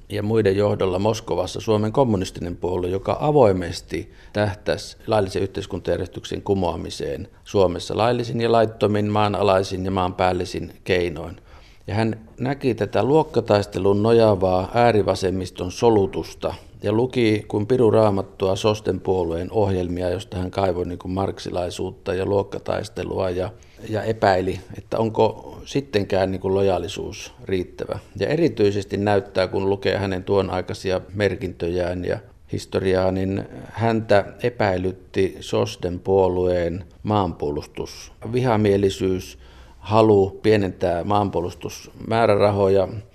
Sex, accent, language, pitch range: male, native, Finnish, 90-105 Hz